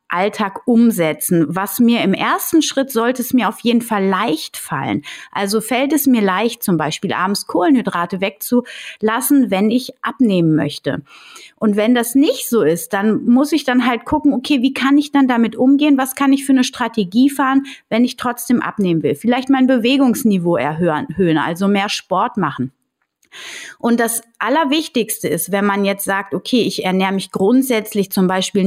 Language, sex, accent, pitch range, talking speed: German, female, German, 195-255 Hz, 175 wpm